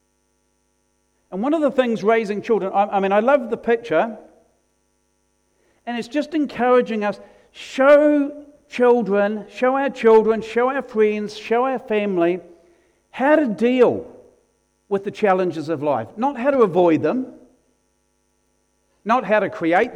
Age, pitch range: 60-79, 175-230 Hz